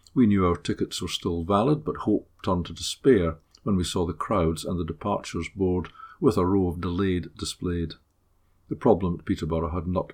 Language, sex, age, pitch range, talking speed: English, male, 50-69, 85-100 Hz, 195 wpm